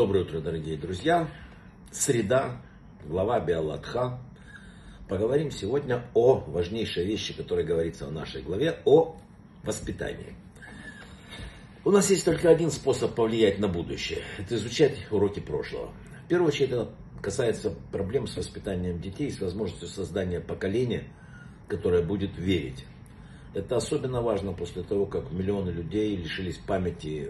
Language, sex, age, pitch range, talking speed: Russian, male, 60-79, 90-140 Hz, 130 wpm